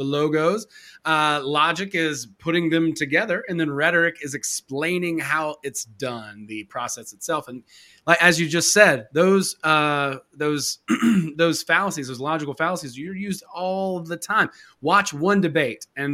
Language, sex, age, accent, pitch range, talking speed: English, male, 30-49, American, 135-175 Hz, 150 wpm